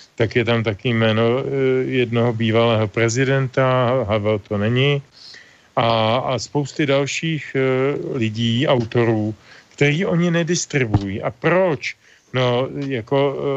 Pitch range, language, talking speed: 115-135 Hz, Slovak, 105 wpm